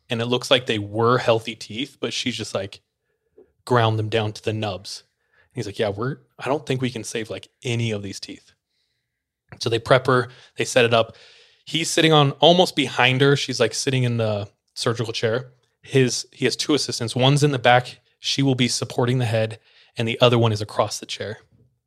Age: 20-39